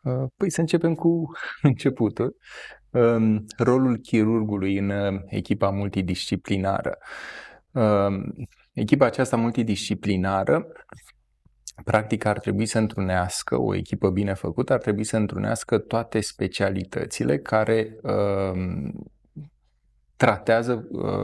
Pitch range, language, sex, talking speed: 100-115 Hz, Romanian, male, 85 wpm